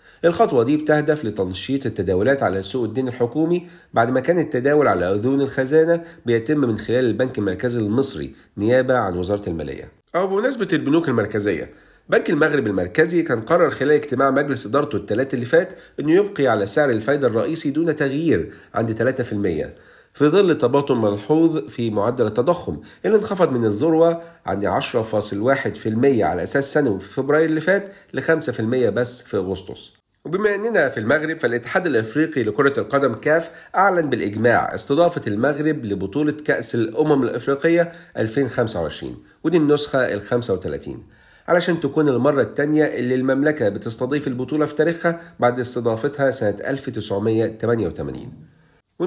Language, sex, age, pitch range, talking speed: Arabic, male, 50-69, 115-155 Hz, 140 wpm